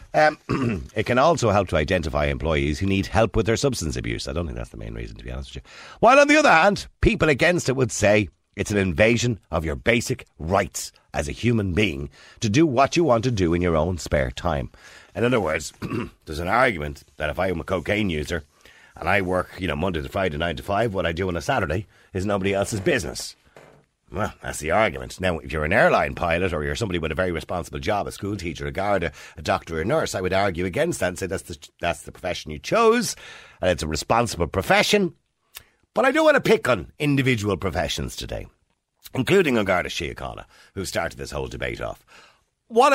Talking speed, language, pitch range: 225 wpm, English, 80-115 Hz